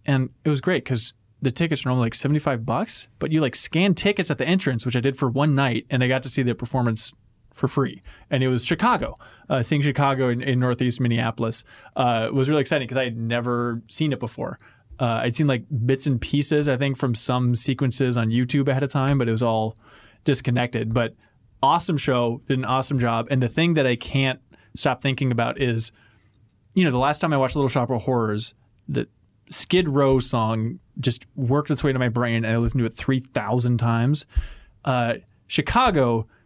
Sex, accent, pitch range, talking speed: male, American, 120-150 Hz, 210 wpm